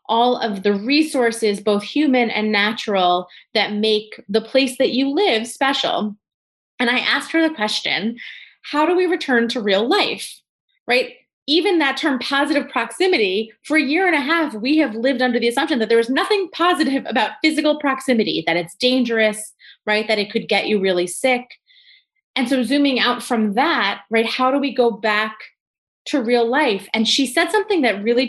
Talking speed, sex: 185 wpm, female